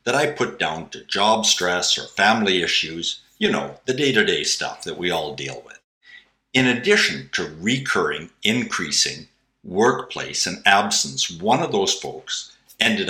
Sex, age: male, 60-79